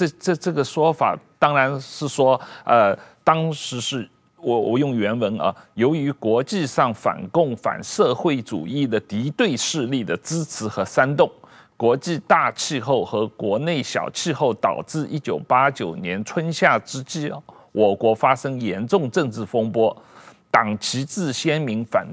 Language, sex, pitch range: Chinese, male, 125-175 Hz